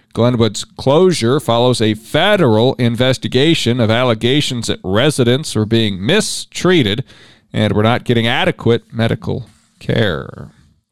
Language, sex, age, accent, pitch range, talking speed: English, male, 40-59, American, 120-150 Hz, 110 wpm